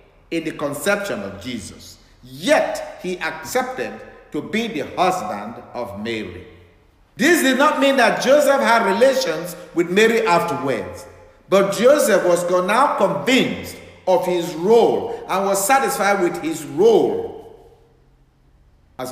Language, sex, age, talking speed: English, male, 50-69, 125 wpm